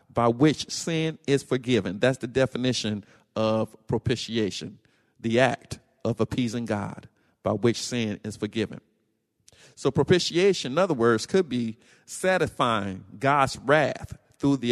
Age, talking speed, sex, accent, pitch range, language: 50-69, 125 wpm, male, American, 115-140 Hz, English